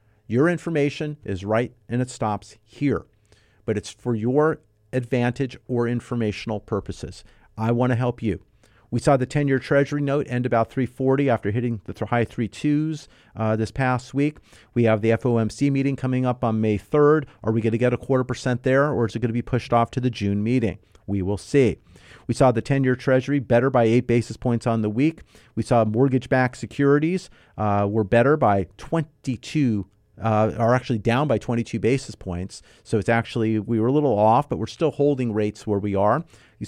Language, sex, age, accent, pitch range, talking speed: English, male, 40-59, American, 110-130 Hz, 195 wpm